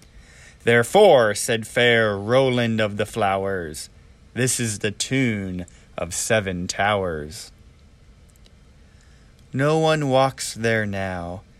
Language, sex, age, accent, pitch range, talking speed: English, male, 30-49, American, 90-120 Hz, 100 wpm